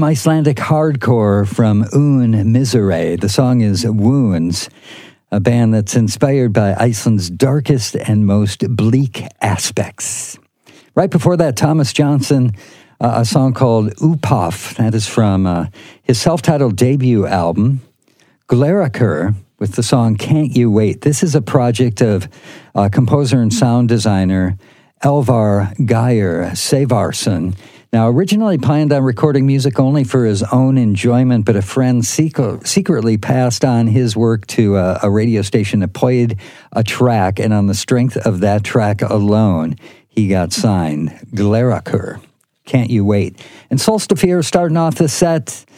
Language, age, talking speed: English, 50-69, 140 wpm